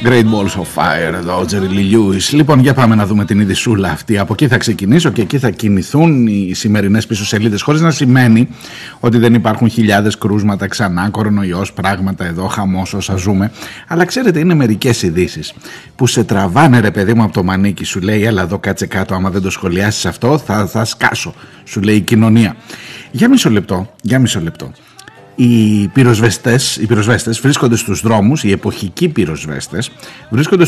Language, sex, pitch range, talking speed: Greek, male, 100-135 Hz, 180 wpm